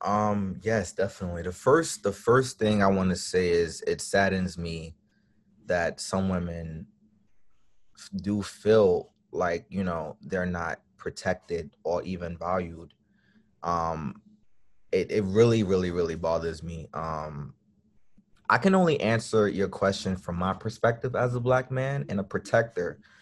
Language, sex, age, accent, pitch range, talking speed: English, male, 20-39, American, 90-110 Hz, 140 wpm